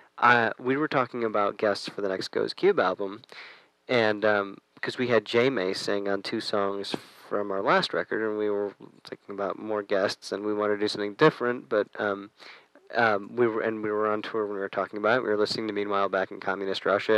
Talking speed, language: 230 wpm, English